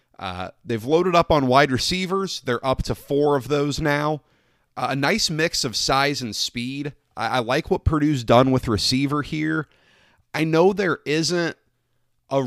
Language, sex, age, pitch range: English, male, 30-49, 115-145 Hz